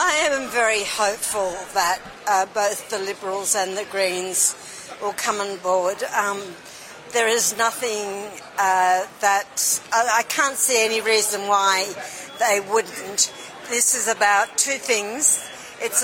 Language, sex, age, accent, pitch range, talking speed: Italian, female, 60-79, Australian, 140-210 Hz, 130 wpm